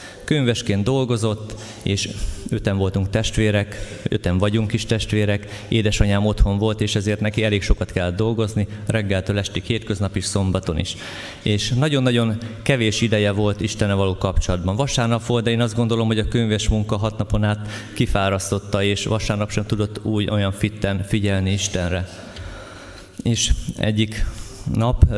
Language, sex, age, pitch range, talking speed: Hungarian, male, 20-39, 95-110 Hz, 145 wpm